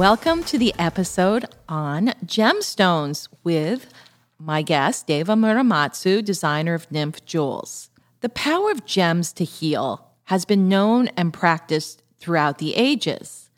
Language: English